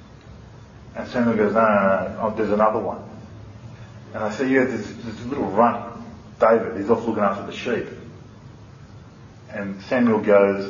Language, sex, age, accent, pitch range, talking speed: English, male, 30-49, Australian, 105-125 Hz, 165 wpm